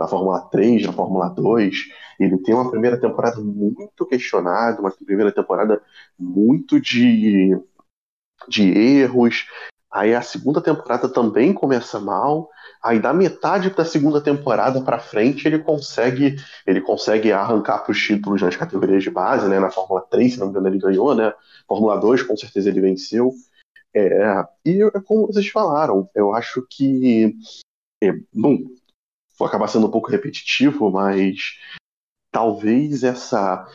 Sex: male